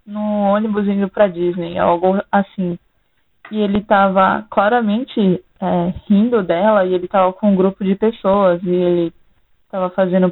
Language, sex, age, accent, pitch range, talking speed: Portuguese, female, 20-39, Brazilian, 180-210 Hz, 150 wpm